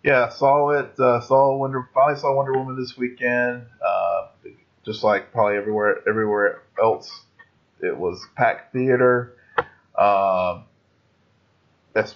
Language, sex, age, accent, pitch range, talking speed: English, male, 30-49, American, 105-130 Hz, 125 wpm